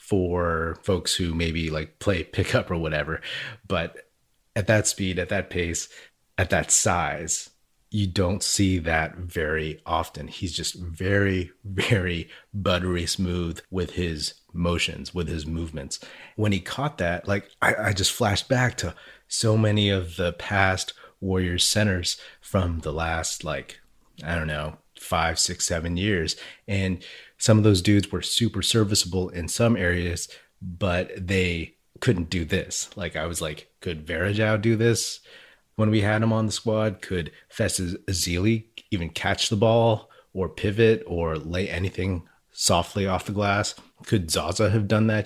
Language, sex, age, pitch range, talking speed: English, male, 30-49, 85-105 Hz, 155 wpm